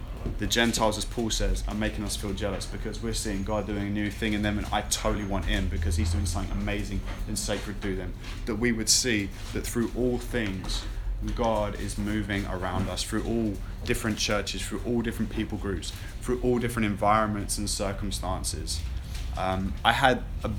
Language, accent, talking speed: English, British, 190 wpm